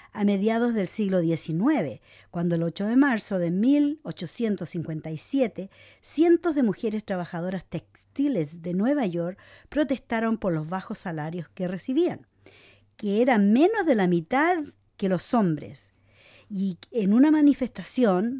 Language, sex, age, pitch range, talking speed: English, female, 50-69, 175-240 Hz, 130 wpm